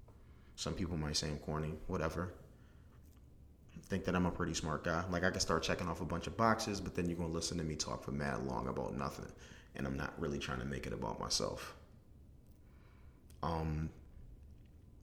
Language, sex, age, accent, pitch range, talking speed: English, male, 30-49, American, 80-95 Hz, 195 wpm